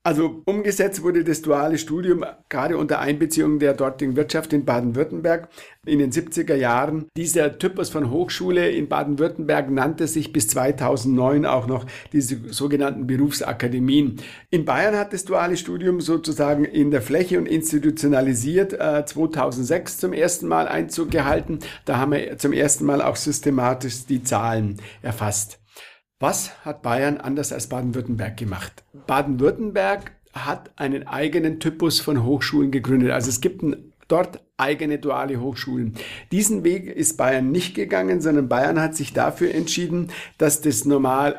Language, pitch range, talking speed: German, 130-160 Hz, 145 wpm